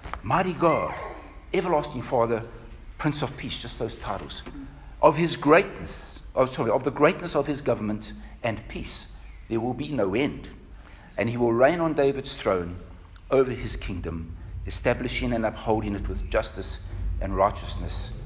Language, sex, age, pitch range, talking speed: English, male, 60-79, 90-150 Hz, 150 wpm